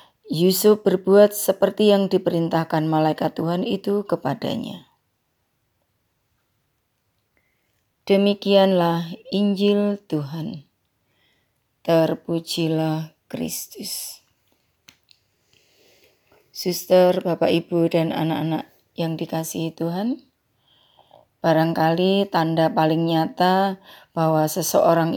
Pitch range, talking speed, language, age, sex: 160-185 Hz, 65 wpm, Indonesian, 30-49, female